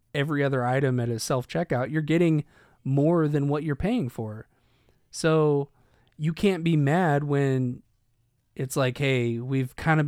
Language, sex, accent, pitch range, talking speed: English, male, American, 115-145 Hz, 160 wpm